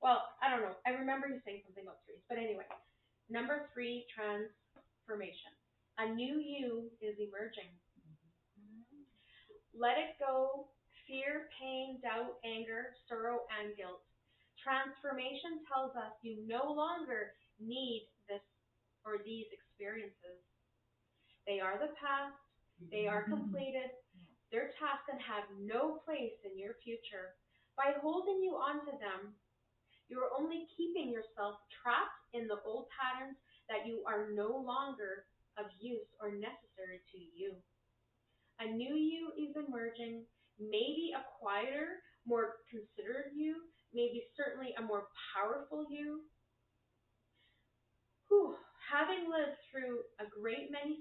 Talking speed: 125 wpm